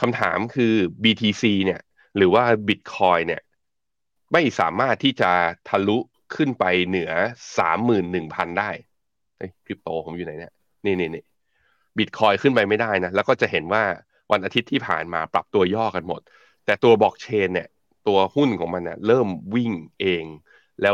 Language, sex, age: Thai, male, 20-39